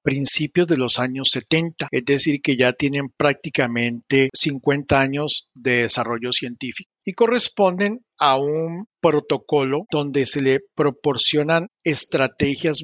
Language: English